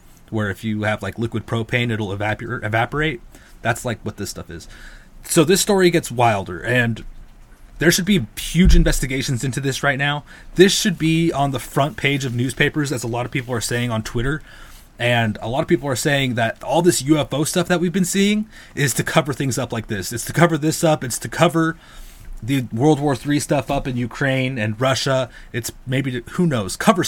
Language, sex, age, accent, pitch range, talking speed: English, male, 30-49, American, 115-145 Hz, 210 wpm